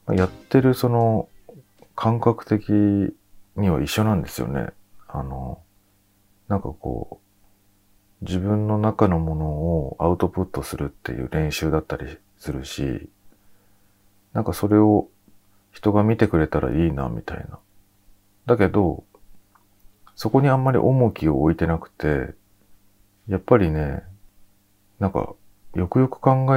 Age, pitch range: 40-59, 85-105 Hz